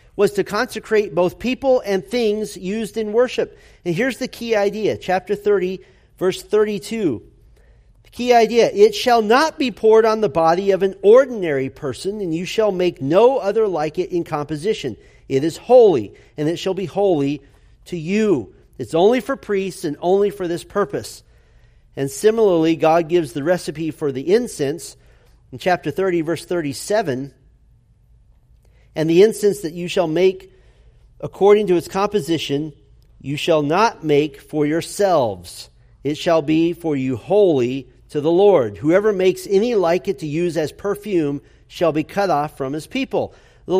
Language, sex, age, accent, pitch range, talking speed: English, male, 40-59, American, 155-215 Hz, 165 wpm